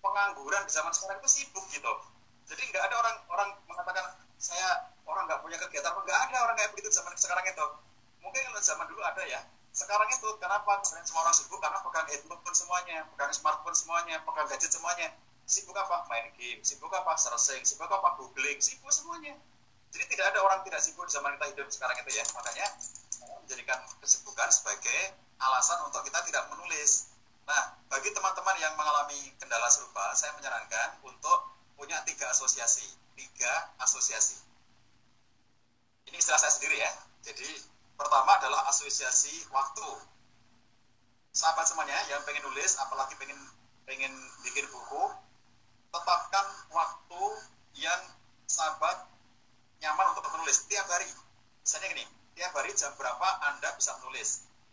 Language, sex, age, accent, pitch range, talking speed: Indonesian, male, 30-49, native, 125-210 Hz, 150 wpm